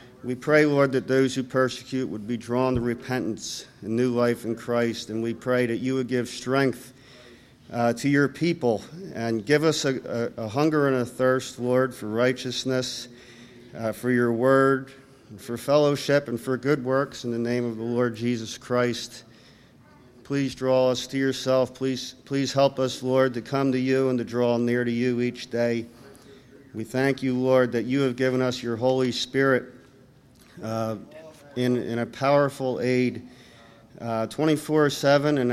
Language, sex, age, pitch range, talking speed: English, male, 50-69, 120-135 Hz, 175 wpm